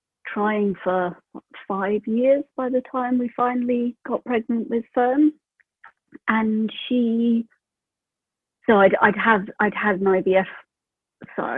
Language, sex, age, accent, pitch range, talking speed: English, female, 40-59, British, 195-250 Hz, 125 wpm